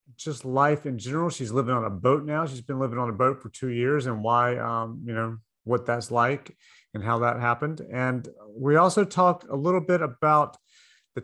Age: 40-59